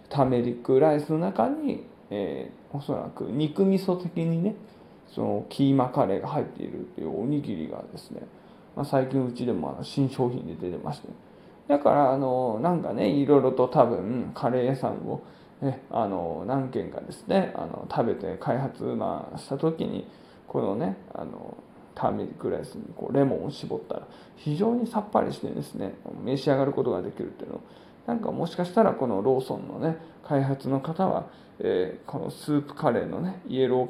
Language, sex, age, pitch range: Japanese, male, 20-39, 135-215 Hz